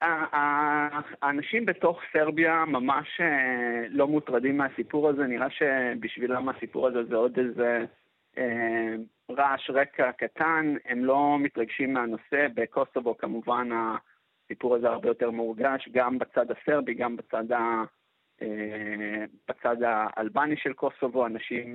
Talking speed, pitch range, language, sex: 115 wpm, 115-145 Hz, Hebrew, male